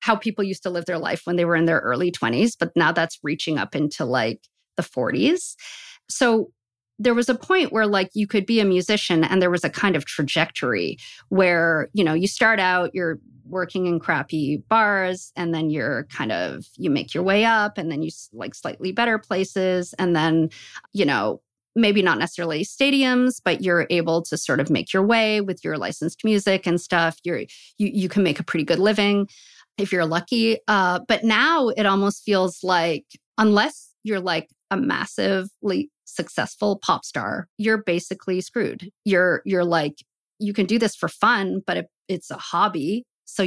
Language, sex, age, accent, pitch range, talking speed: English, female, 40-59, American, 170-210 Hz, 190 wpm